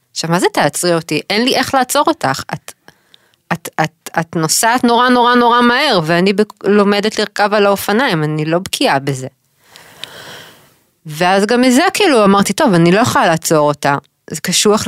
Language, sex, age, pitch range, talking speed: Hebrew, female, 20-39, 150-205 Hz, 170 wpm